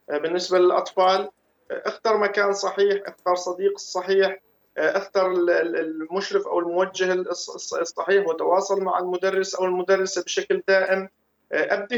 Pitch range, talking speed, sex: 160-210 Hz, 105 wpm, male